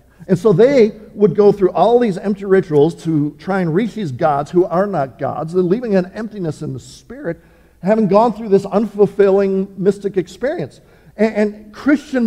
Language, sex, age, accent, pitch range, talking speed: English, male, 50-69, American, 145-210 Hz, 175 wpm